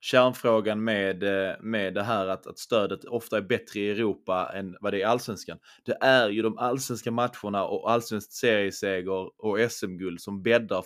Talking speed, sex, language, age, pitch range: 175 wpm, male, Swedish, 20-39, 100-115 Hz